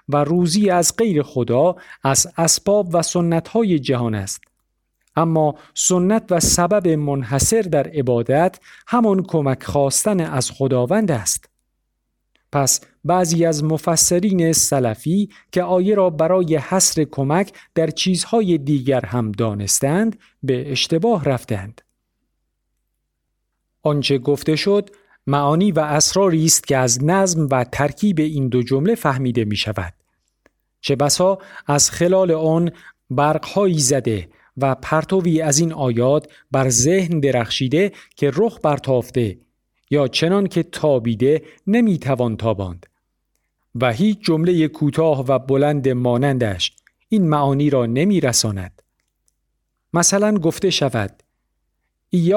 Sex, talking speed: male, 115 wpm